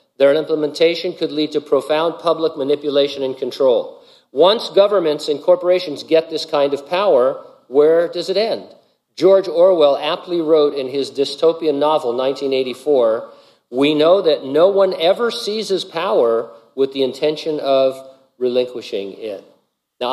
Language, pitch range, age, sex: English, 135-175 Hz, 50-69, male